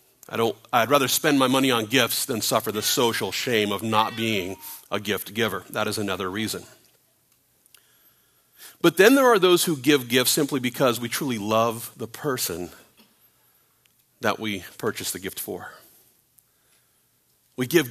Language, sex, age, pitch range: English, male, 40-59, 125-165 Hz